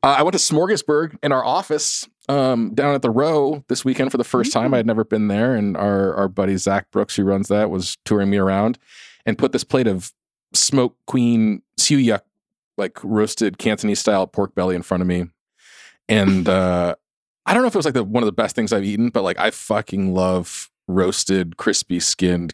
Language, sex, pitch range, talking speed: English, male, 90-115 Hz, 210 wpm